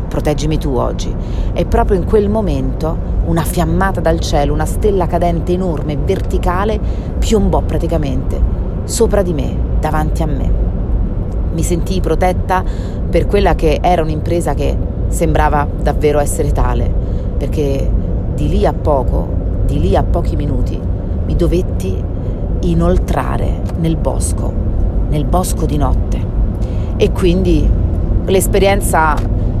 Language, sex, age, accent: Italian, female, 40-59, native